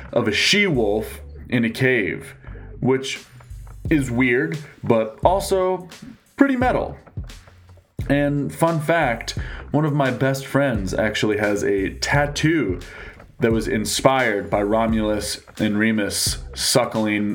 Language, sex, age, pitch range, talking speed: English, male, 20-39, 105-135 Hz, 115 wpm